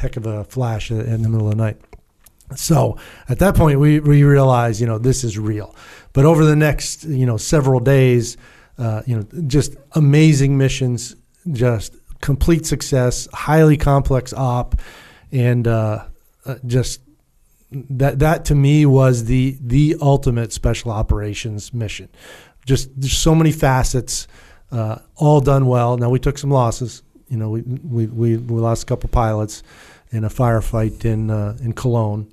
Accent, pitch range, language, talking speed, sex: American, 110-135 Hz, English, 160 wpm, male